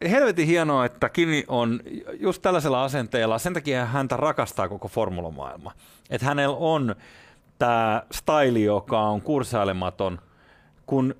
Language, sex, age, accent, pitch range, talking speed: Finnish, male, 30-49, native, 105-135 Hz, 125 wpm